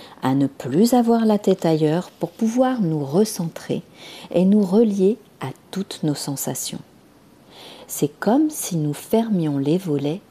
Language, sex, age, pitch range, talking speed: French, female, 40-59, 145-205 Hz, 145 wpm